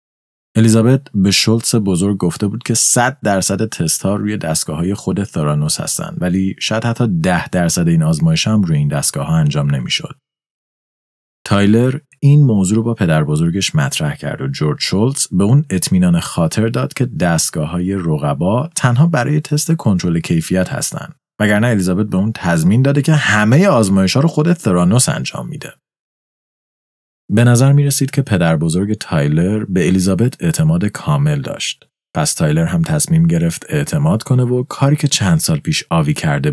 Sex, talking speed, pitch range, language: male, 165 wpm, 95-150 Hz, Persian